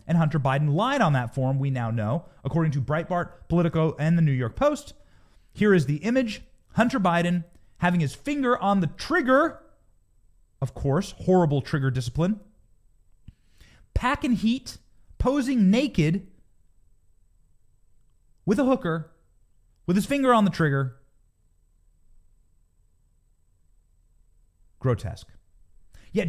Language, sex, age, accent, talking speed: English, male, 30-49, American, 120 wpm